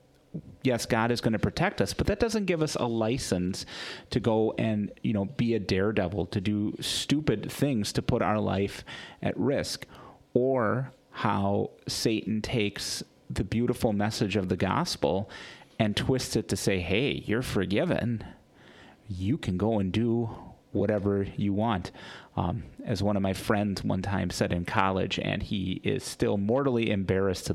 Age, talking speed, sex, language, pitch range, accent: 30-49, 165 wpm, male, English, 95-120 Hz, American